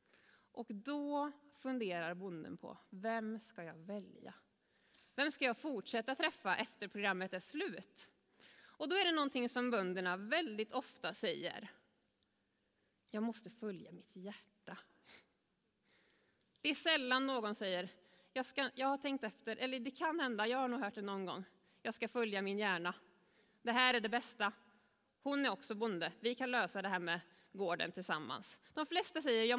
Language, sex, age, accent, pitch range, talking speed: Swedish, female, 20-39, native, 200-265 Hz, 160 wpm